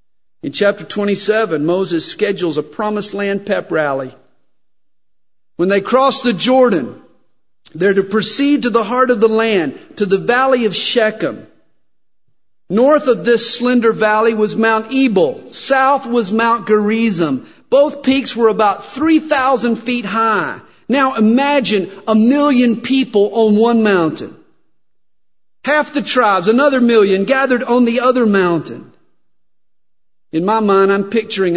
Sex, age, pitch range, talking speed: male, 50-69, 195-265 Hz, 135 wpm